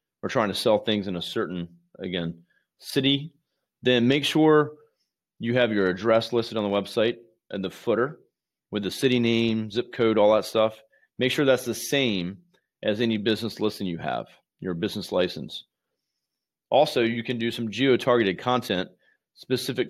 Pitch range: 100-125 Hz